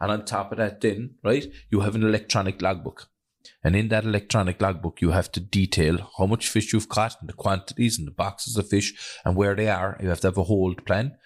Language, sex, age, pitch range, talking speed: English, male, 30-49, 90-115 Hz, 240 wpm